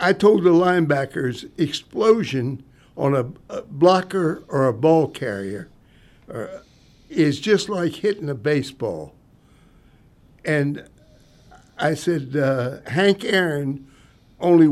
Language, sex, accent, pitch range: English, male, American, 140-190 Hz